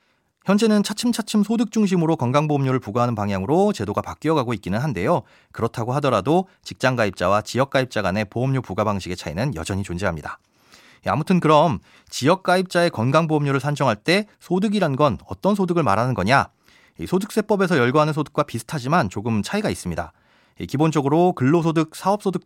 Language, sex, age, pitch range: Korean, male, 30-49, 115-175 Hz